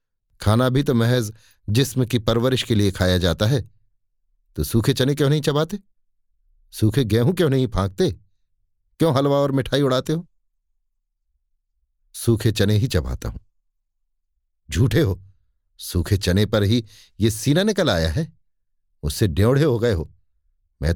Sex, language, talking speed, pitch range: male, Hindi, 145 wpm, 85-120 Hz